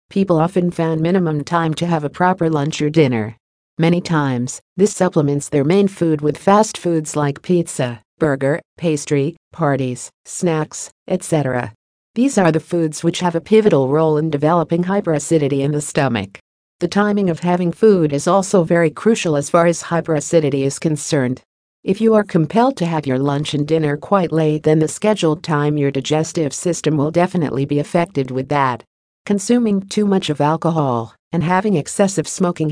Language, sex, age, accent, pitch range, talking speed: English, female, 50-69, American, 145-180 Hz, 170 wpm